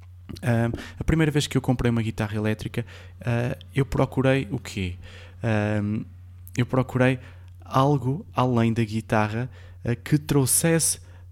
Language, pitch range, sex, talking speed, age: Portuguese, 95-125 Hz, male, 110 wpm, 20-39